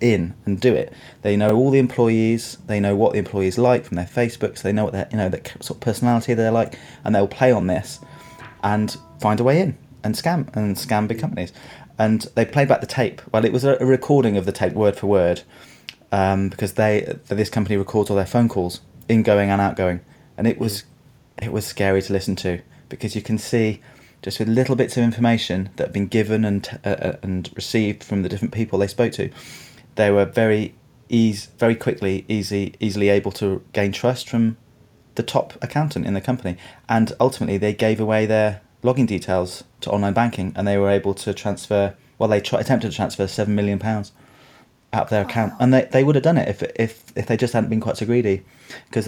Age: 30-49